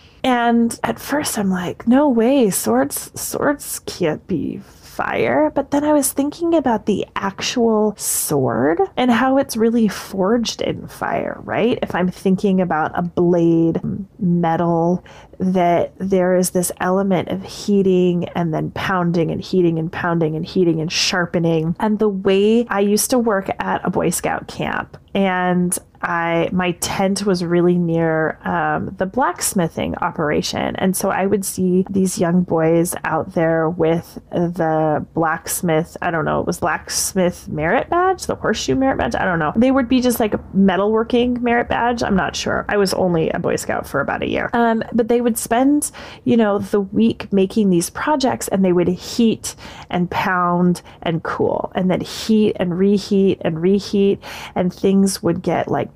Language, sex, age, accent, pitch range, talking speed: English, female, 20-39, American, 175-225 Hz, 170 wpm